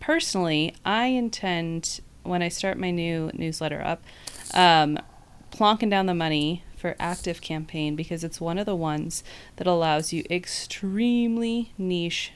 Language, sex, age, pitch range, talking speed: English, female, 30-49, 160-195 Hz, 140 wpm